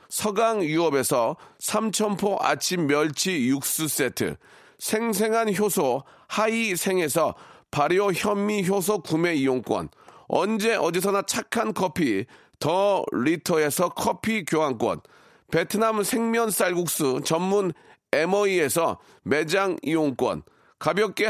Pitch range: 170-220 Hz